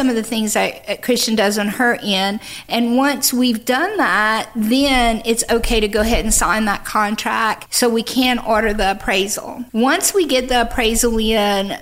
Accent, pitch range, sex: American, 215-255 Hz, female